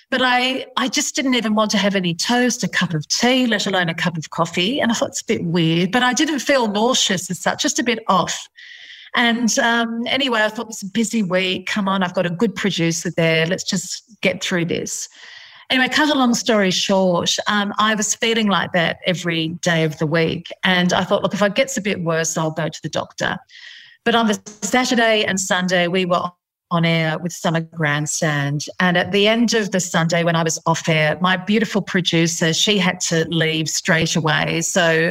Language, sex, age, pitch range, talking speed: English, female, 40-59, 170-225 Hz, 220 wpm